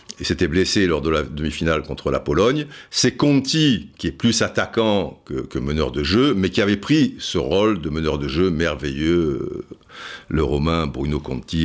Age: 60-79